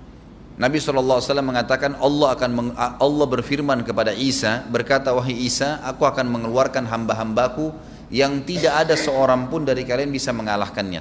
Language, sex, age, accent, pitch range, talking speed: Indonesian, male, 30-49, native, 125-150 Hz, 140 wpm